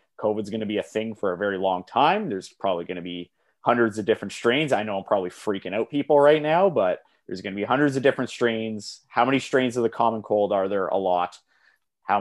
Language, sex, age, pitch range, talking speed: English, male, 30-49, 95-130 Hz, 250 wpm